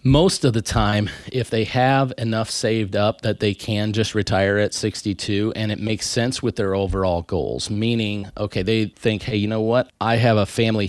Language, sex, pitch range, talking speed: English, male, 100-115 Hz, 205 wpm